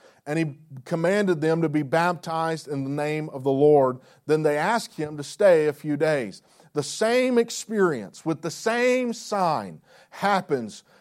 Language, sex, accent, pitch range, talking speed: English, male, American, 155-195 Hz, 165 wpm